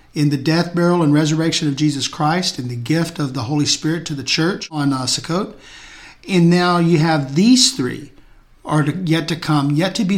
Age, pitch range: 50-69, 145-175 Hz